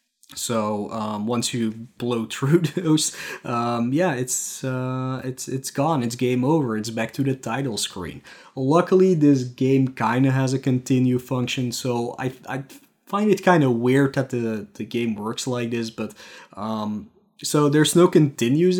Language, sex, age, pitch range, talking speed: English, male, 20-39, 110-140 Hz, 170 wpm